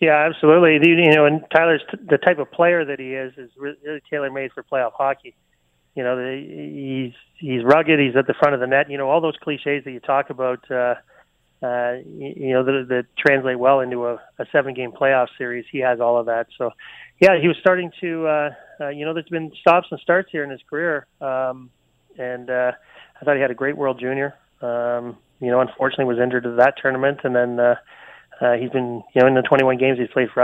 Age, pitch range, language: 30-49, 125-145 Hz, English